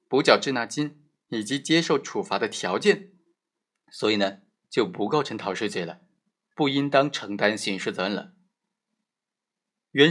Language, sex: Chinese, male